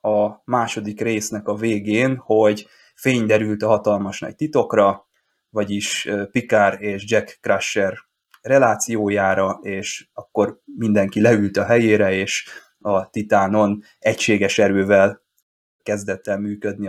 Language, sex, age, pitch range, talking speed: Hungarian, male, 20-39, 100-115 Hz, 115 wpm